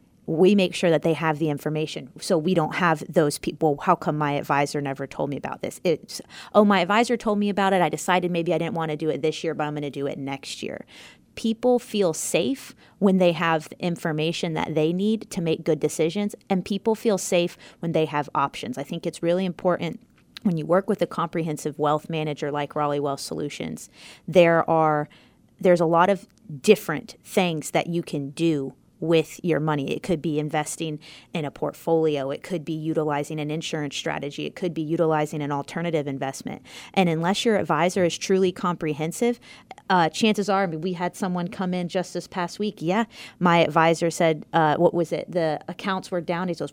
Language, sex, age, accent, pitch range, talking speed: English, female, 30-49, American, 155-185 Hz, 205 wpm